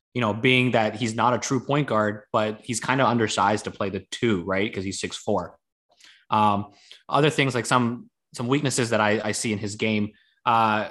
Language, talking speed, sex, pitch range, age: English, 215 wpm, male, 100-120 Hz, 20-39